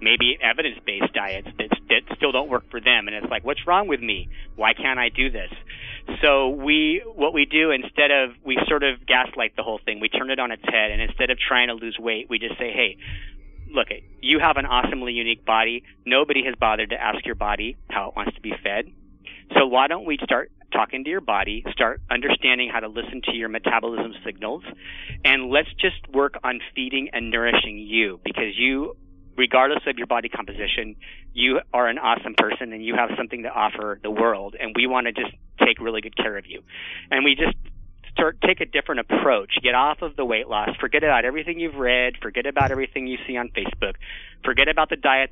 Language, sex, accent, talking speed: English, male, American, 215 wpm